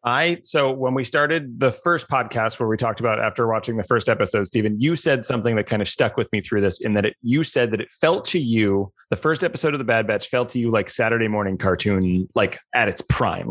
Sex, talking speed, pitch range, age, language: male, 250 wpm, 115-150 Hz, 30-49, English